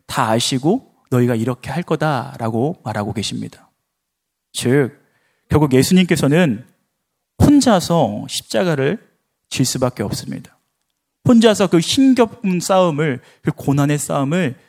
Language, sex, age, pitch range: Korean, male, 40-59, 135-215 Hz